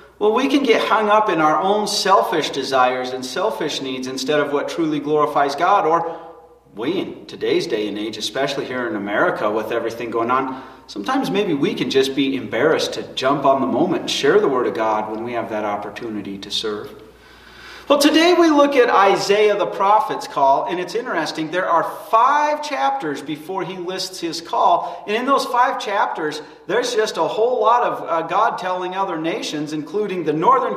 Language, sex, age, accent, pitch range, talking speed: English, male, 40-59, American, 145-235 Hz, 195 wpm